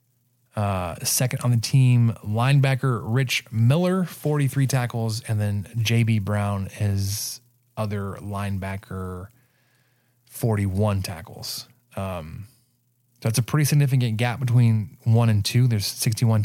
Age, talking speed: 20-39, 115 wpm